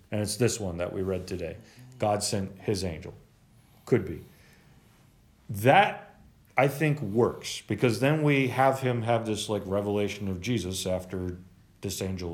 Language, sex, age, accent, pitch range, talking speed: English, male, 40-59, American, 100-130 Hz, 155 wpm